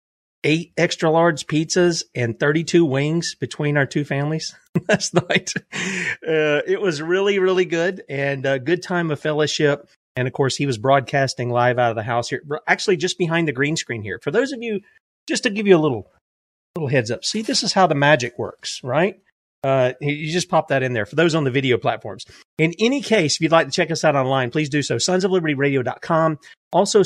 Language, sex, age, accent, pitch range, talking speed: English, male, 30-49, American, 135-175 Hz, 210 wpm